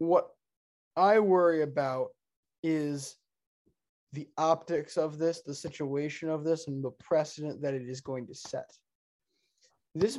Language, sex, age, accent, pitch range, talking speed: English, male, 20-39, American, 140-180 Hz, 135 wpm